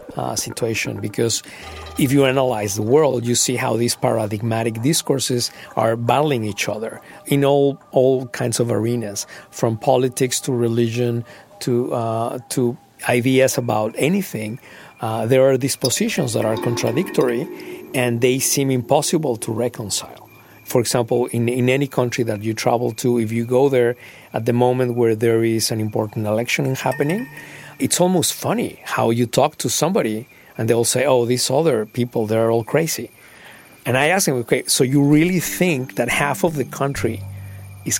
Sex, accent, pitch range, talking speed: male, Mexican, 115-140 Hz, 165 wpm